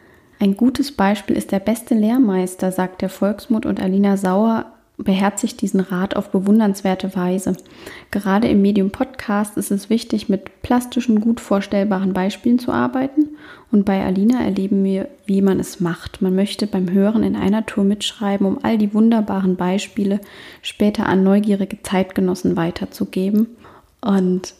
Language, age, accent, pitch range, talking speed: German, 30-49, German, 185-215 Hz, 150 wpm